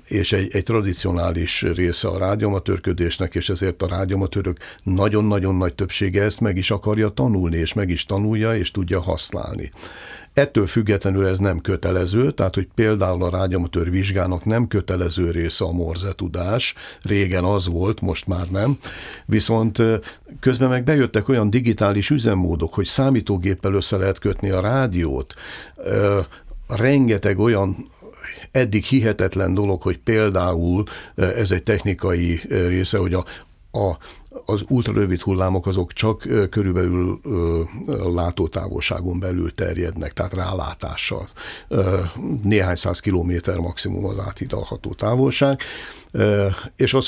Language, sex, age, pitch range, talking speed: Hungarian, male, 60-79, 90-110 Hz, 120 wpm